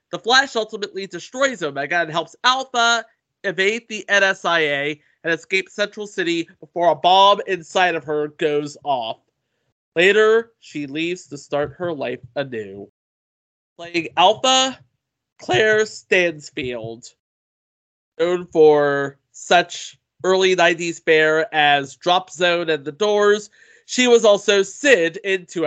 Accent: American